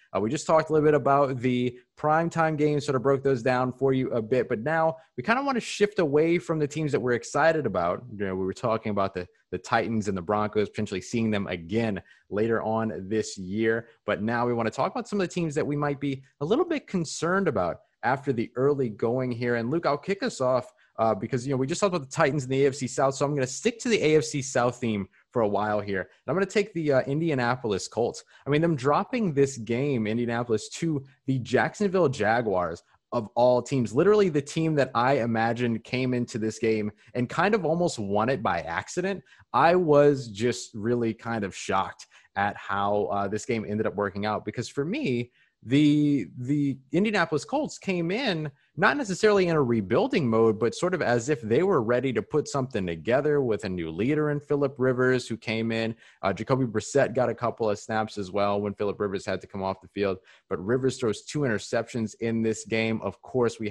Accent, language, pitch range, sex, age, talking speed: American, English, 110-150 Hz, male, 20-39, 225 wpm